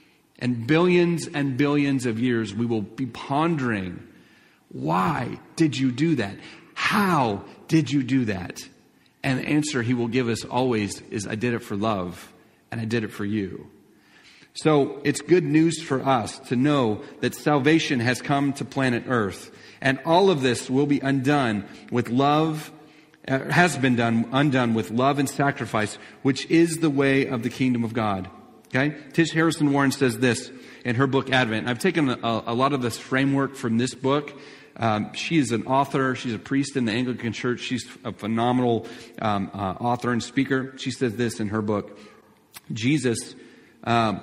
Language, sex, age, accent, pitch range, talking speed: English, male, 40-59, American, 115-145 Hz, 175 wpm